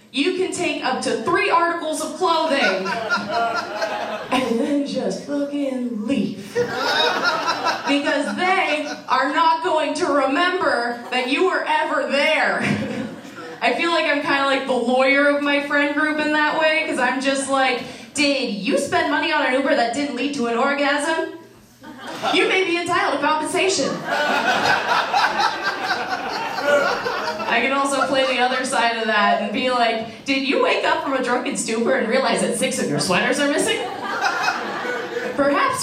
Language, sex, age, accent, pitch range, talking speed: English, female, 20-39, American, 255-325 Hz, 160 wpm